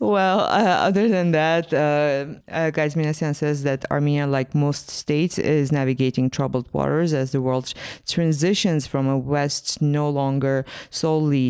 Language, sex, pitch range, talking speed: English, female, 125-150 Hz, 145 wpm